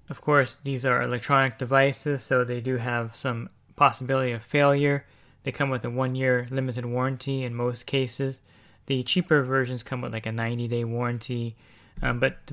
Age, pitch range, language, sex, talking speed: 20-39, 120-130 Hz, English, male, 170 wpm